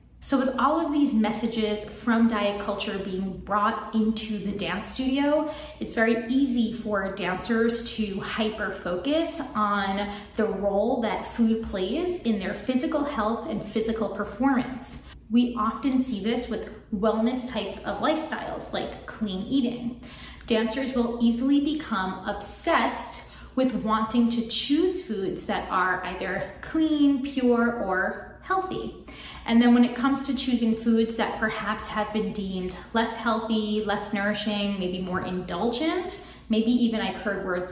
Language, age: English, 20-39